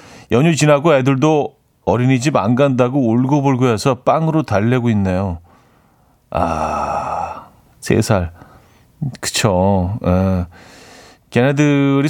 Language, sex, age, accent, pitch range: Korean, male, 40-59, native, 105-145 Hz